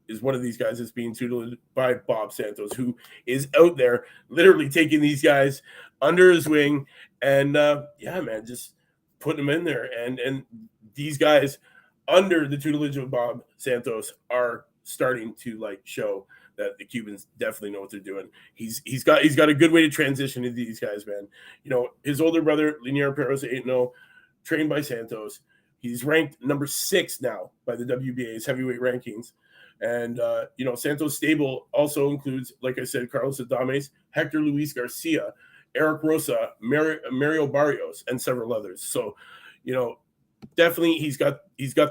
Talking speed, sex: 175 wpm, male